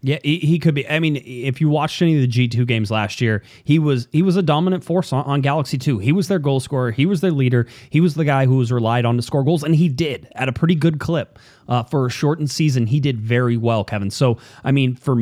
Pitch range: 120-155 Hz